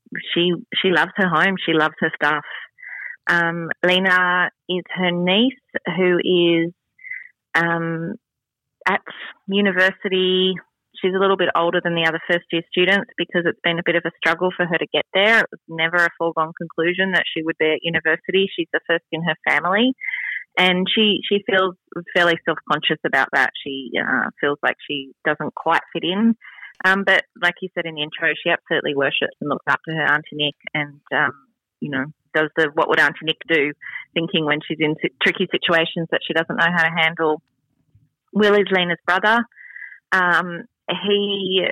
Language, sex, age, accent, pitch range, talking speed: English, female, 30-49, Australian, 160-190 Hz, 180 wpm